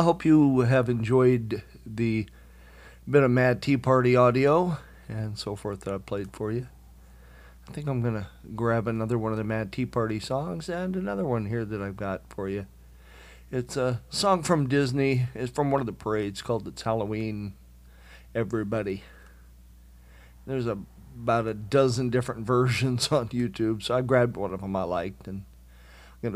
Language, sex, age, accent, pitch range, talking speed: English, male, 50-69, American, 95-130 Hz, 180 wpm